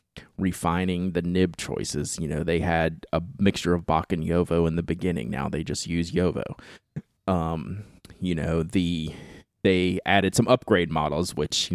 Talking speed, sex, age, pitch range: 170 wpm, male, 30-49, 85-110 Hz